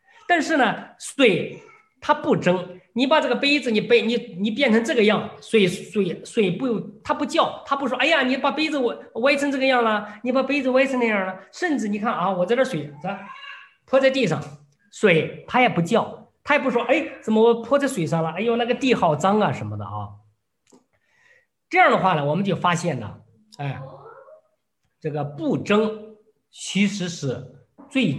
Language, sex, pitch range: Chinese, male, 165-265 Hz